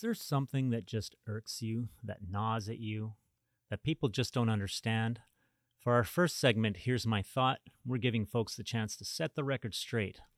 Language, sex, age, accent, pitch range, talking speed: English, male, 30-49, American, 105-130 Hz, 190 wpm